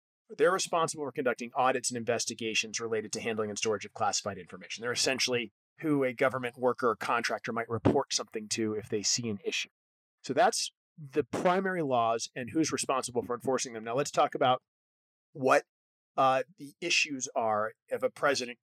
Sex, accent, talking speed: male, American, 175 wpm